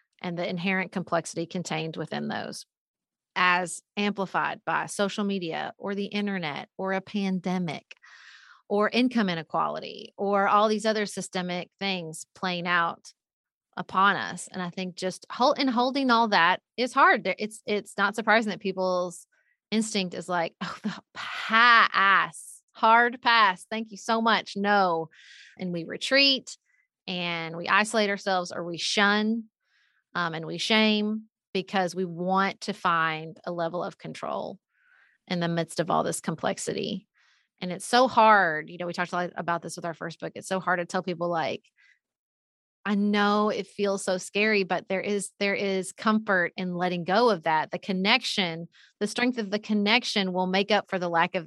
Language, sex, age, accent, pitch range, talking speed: English, female, 30-49, American, 180-215 Hz, 165 wpm